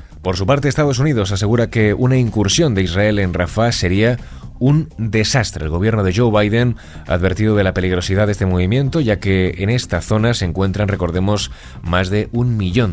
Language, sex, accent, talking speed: Spanish, male, Spanish, 190 wpm